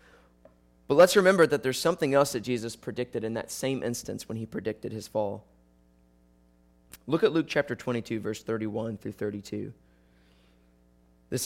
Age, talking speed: 30-49, 150 wpm